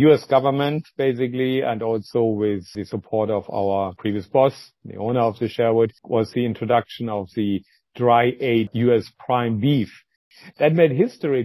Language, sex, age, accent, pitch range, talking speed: English, male, 50-69, German, 115-135 Hz, 150 wpm